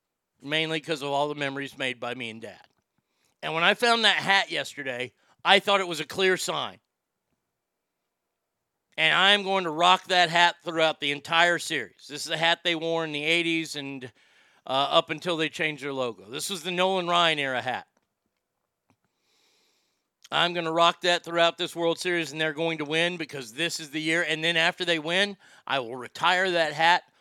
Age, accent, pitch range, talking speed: 40-59, American, 145-175 Hz, 195 wpm